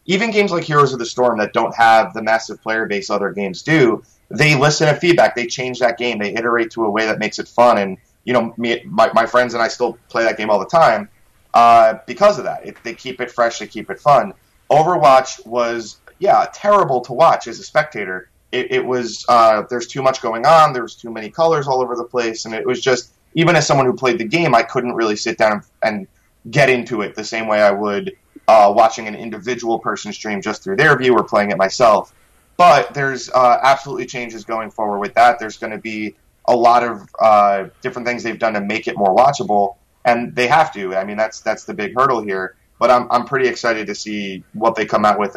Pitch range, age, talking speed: 110-130 Hz, 30-49, 235 wpm